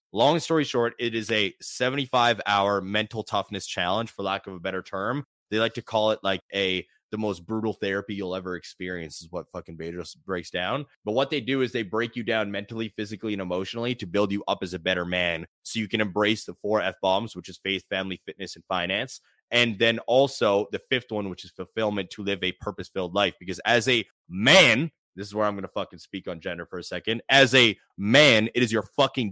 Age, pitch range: 20-39, 95-115 Hz